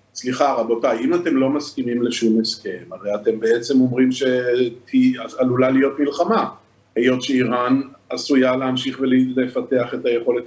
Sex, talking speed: male, 130 wpm